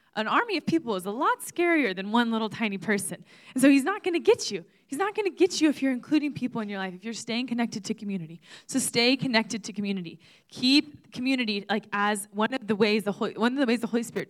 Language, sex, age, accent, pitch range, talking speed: English, female, 20-39, American, 195-260 Hz, 240 wpm